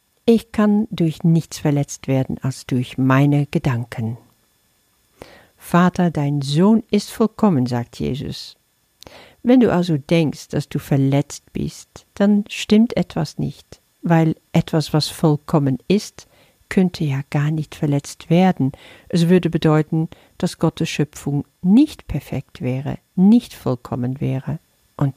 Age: 50-69